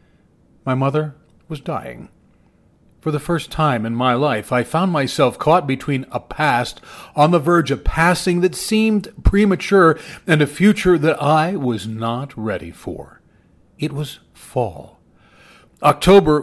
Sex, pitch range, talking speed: male, 130-170 Hz, 145 wpm